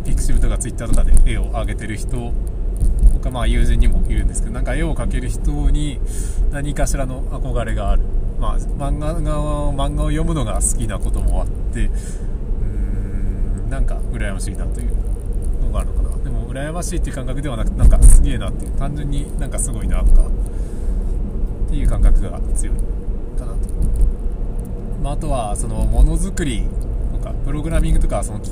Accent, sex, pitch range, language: native, male, 95-115 Hz, Japanese